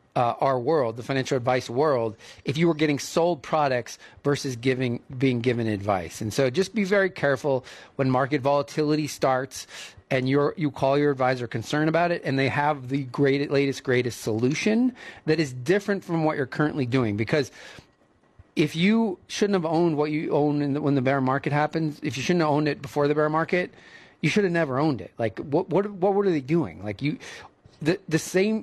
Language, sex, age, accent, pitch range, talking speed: English, male, 30-49, American, 125-165 Hz, 205 wpm